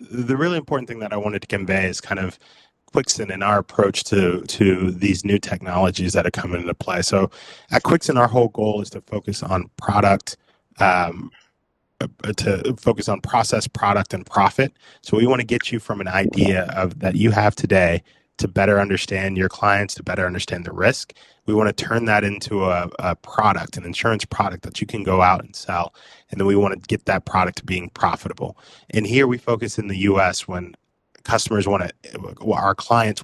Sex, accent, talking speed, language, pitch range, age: male, American, 195 wpm, English, 95-110 Hz, 20-39